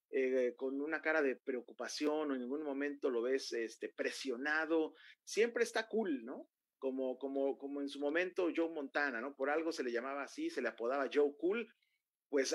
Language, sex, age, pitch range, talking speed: Spanish, male, 40-59, 130-195 Hz, 185 wpm